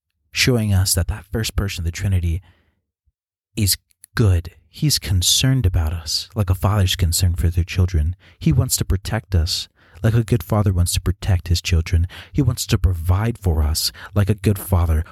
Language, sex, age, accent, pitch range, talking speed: English, male, 30-49, American, 85-105 Hz, 185 wpm